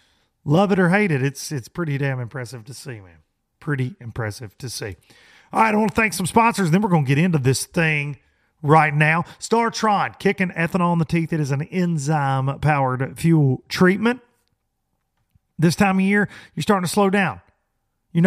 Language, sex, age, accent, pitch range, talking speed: English, male, 40-59, American, 125-185 Hz, 185 wpm